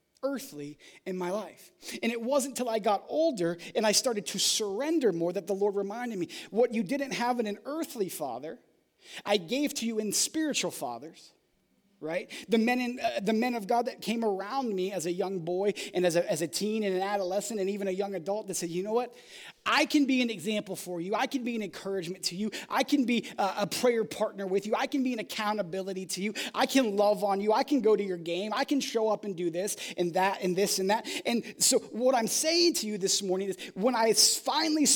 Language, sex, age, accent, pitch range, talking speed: English, male, 30-49, American, 195-260 Hz, 240 wpm